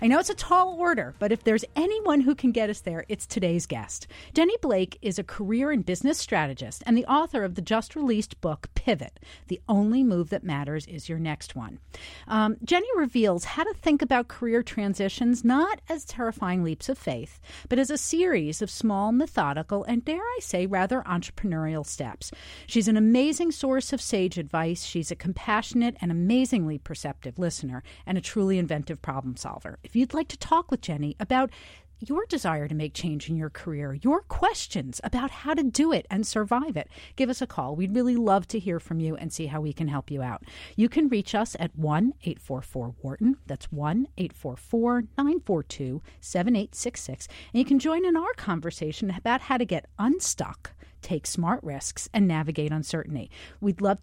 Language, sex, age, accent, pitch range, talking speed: English, female, 40-59, American, 165-255 Hz, 185 wpm